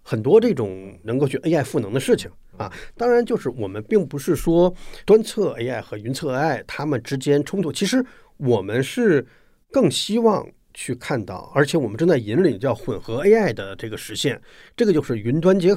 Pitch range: 115-170 Hz